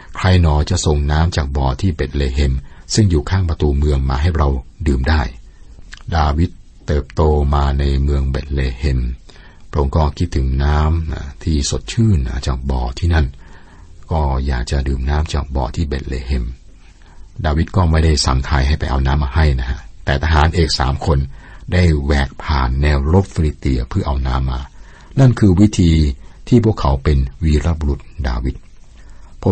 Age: 60-79